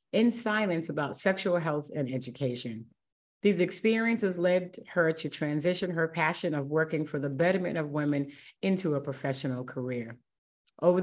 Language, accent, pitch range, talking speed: English, American, 150-195 Hz, 145 wpm